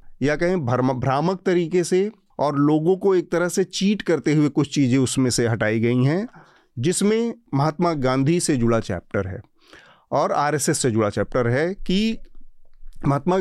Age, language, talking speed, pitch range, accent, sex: 40-59, Hindi, 160 wpm, 130-175 Hz, native, male